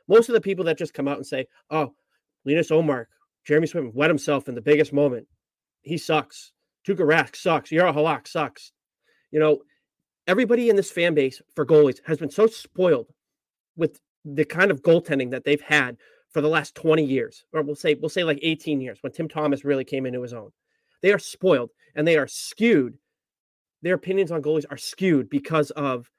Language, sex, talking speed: English, male, 195 wpm